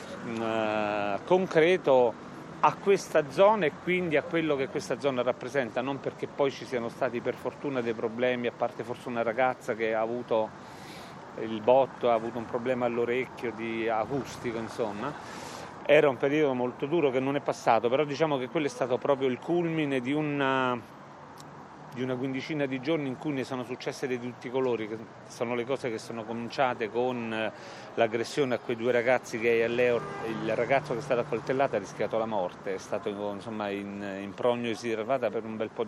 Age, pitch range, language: 40-59, 115-135 Hz, Italian